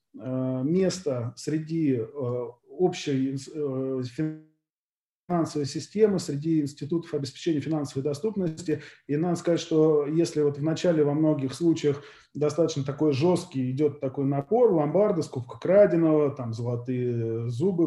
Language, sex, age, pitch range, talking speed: Russian, male, 20-39, 145-170 Hz, 105 wpm